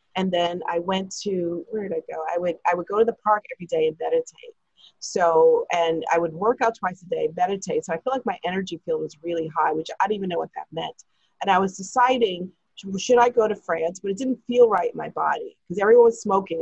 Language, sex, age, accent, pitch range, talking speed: English, female, 30-49, American, 175-240 Hz, 255 wpm